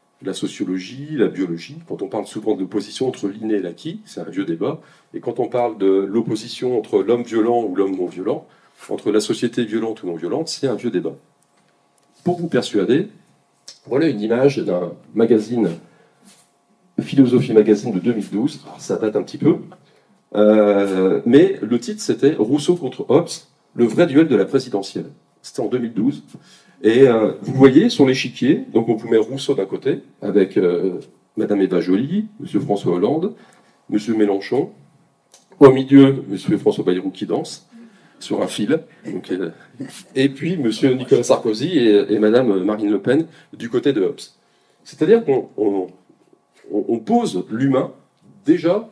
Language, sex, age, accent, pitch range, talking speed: French, male, 40-59, French, 105-140 Hz, 160 wpm